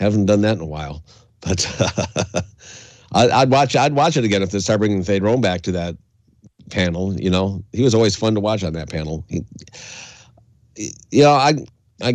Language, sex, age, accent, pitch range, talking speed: English, male, 50-69, American, 95-120 Hz, 200 wpm